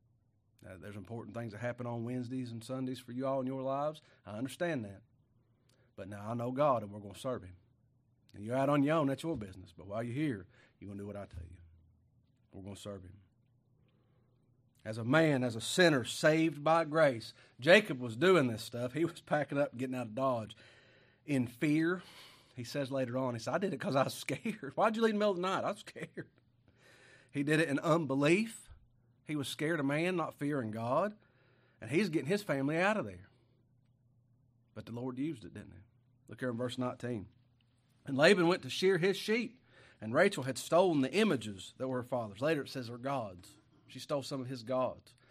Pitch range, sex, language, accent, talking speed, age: 115-145 Hz, male, English, American, 220 wpm, 40-59